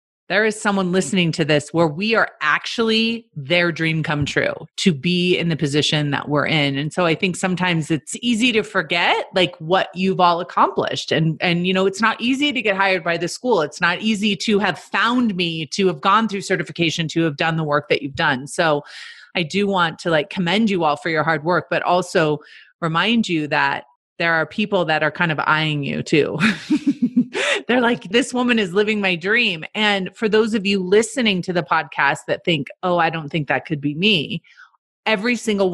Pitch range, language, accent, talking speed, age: 155-205 Hz, English, American, 210 wpm, 30-49